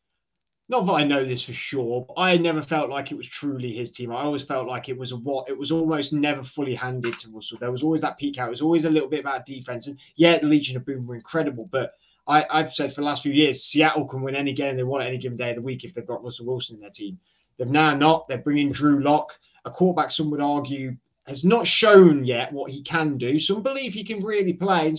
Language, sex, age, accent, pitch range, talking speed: English, male, 20-39, British, 125-160 Hz, 270 wpm